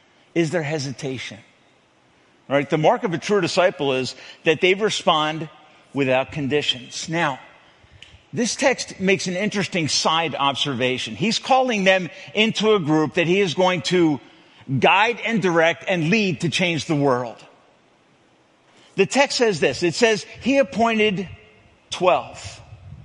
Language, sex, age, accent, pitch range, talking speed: English, male, 50-69, American, 155-220 Hz, 140 wpm